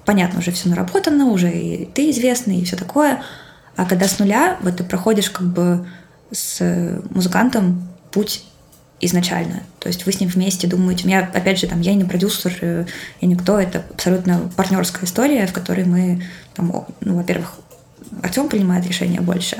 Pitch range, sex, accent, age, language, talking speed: 175-195 Hz, female, native, 20-39, Russian, 170 wpm